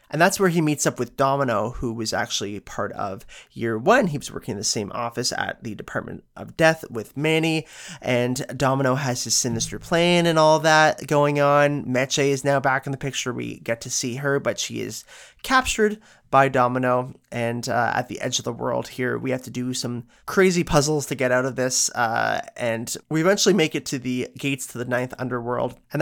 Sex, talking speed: male, 215 wpm